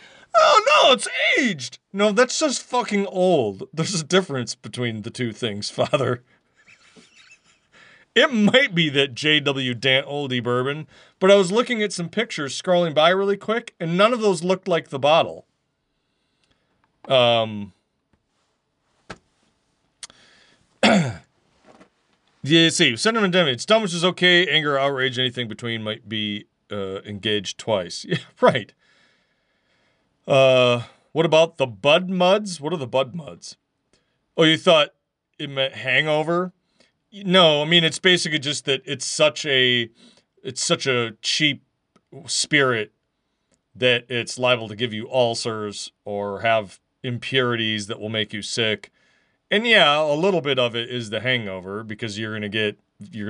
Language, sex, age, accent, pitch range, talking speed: English, male, 40-59, American, 110-170 Hz, 140 wpm